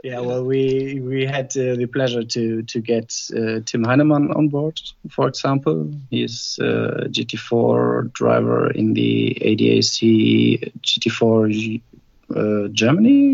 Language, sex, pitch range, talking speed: English, male, 110-125 Hz, 120 wpm